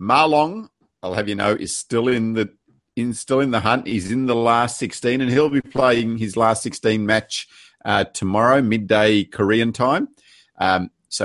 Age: 50-69